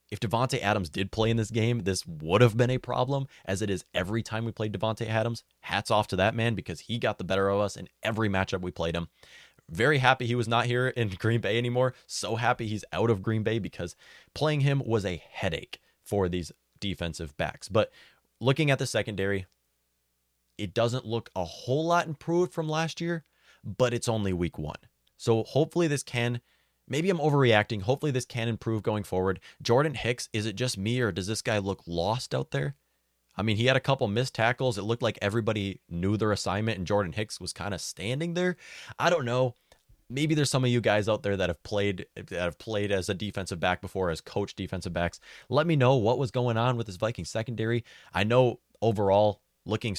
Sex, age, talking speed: male, 20-39, 215 wpm